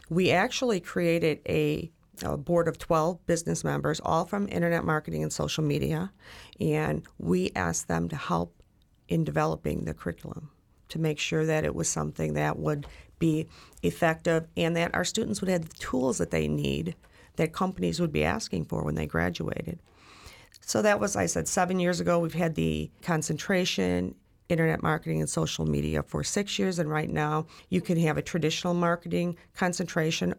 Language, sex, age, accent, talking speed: English, female, 40-59, American, 175 wpm